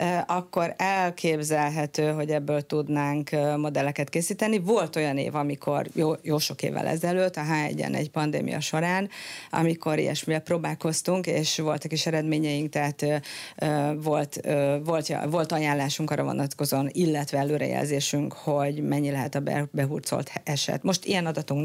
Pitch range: 145-175 Hz